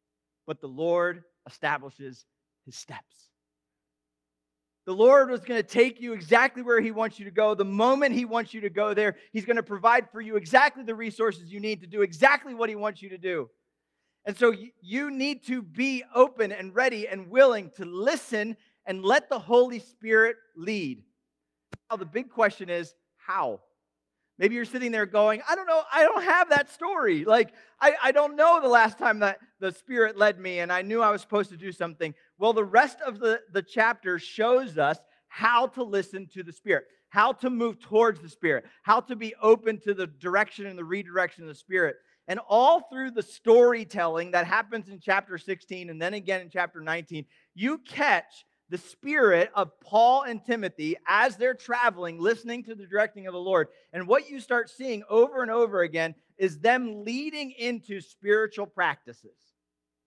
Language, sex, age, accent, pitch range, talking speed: English, male, 40-59, American, 180-240 Hz, 190 wpm